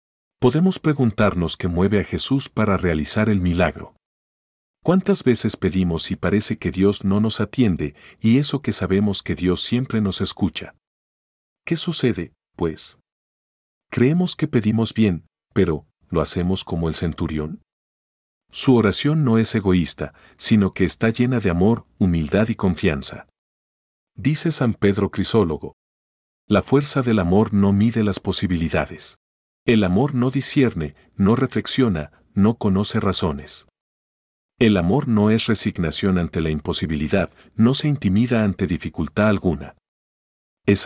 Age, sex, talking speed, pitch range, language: 40-59, male, 135 wpm, 80-115 Hz, Spanish